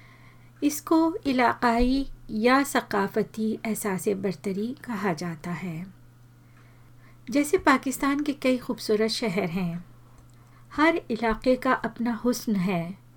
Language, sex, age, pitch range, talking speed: Hindi, female, 50-69, 190-245 Hz, 100 wpm